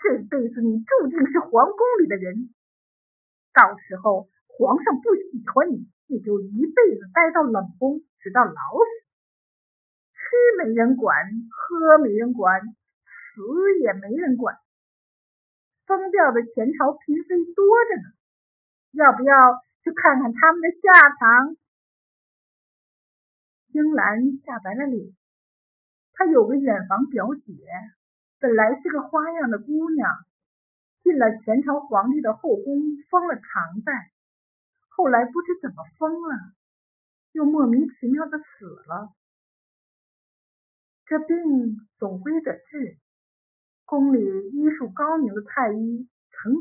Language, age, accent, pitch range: Chinese, 50-69, native, 220-310 Hz